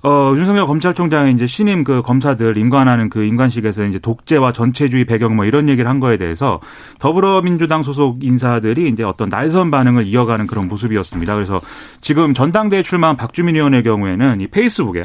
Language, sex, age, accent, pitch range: Korean, male, 30-49, native, 120-170 Hz